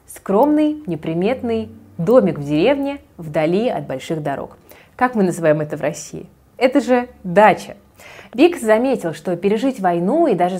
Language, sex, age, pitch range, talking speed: Russian, female, 20-39, 175-230 Hz, 140 wpm